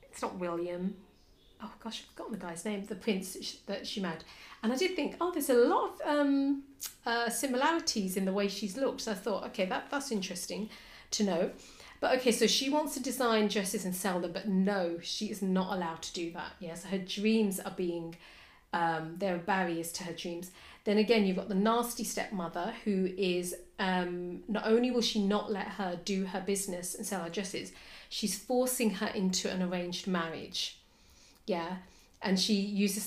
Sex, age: female, 40-59